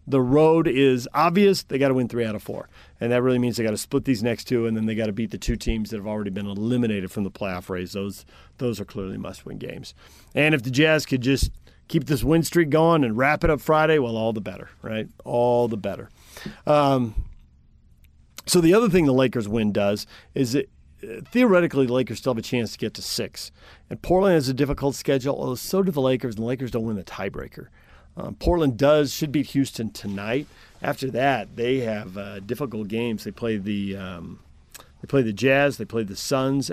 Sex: male